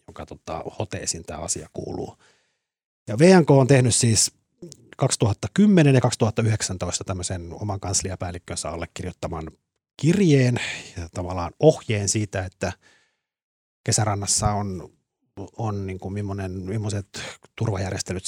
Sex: male